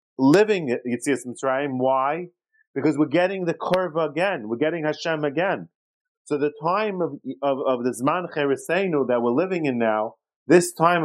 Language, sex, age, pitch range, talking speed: English, male, 40-59, 150-200 Hz, 180 wpm